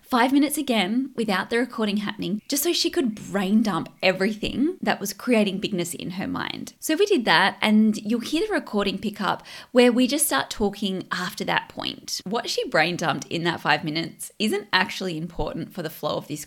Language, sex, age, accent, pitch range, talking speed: English, female, 20-39, Australian, 195-270 Hz, 205 wpm